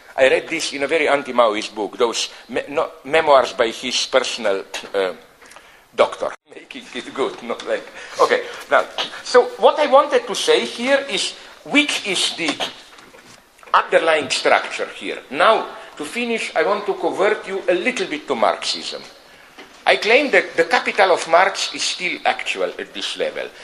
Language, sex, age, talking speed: English, male, 50-69, 155 wpm